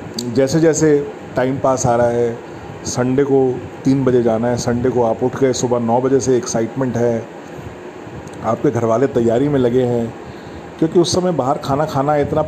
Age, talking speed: 30-49, 185 wpm